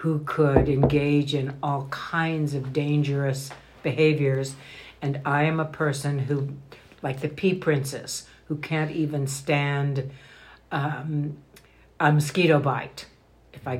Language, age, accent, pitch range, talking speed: English, 60-79, American, 135-150 Hz, 125 wpm